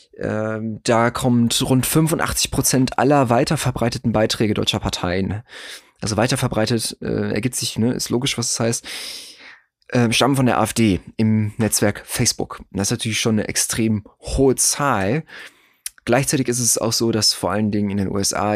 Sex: male